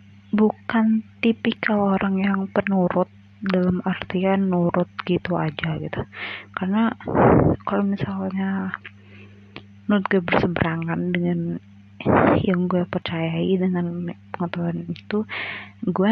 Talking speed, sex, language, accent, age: 95 wpm, female, Indonesian, native, 20-39